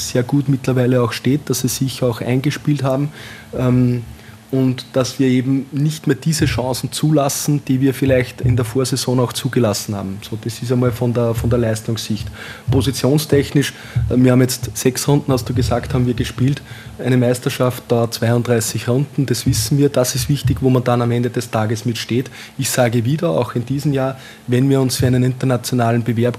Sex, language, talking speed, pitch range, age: male, German, 190 wpm, 120-135 Hz, 20-39